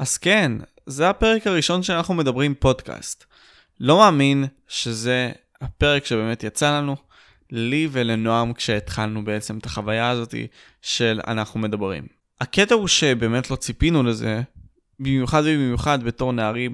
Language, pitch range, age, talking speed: Hebrew, 115-150 Hz, 20-39, 125 wpm